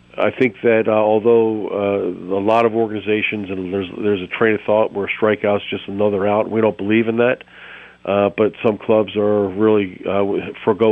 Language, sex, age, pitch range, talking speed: English, male, 40-59, 100-115 Hz, 190 wpm